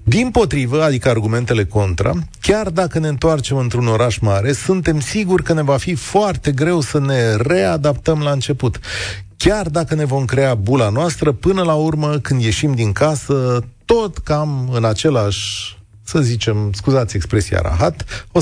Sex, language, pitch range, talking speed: male, Romanian, 110-160 Hz, 160 wpm